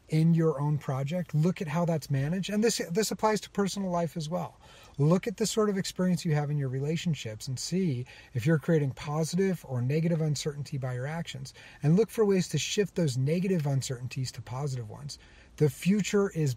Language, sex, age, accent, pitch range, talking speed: English, male, 40-59, American, 130-165 Hz, 205 wpm